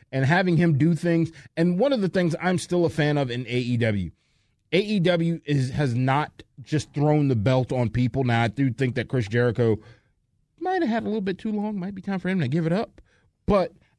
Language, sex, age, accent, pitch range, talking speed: English, male, 30-49, American, 115-165 Hz, 225 wpm